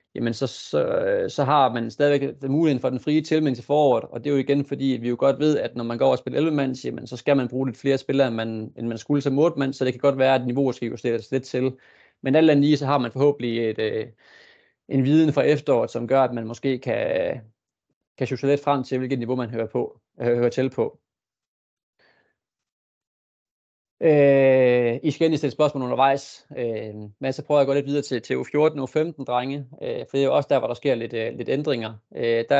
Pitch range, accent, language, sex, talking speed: 120-145 Hz, native, Danish, male, 230 wpm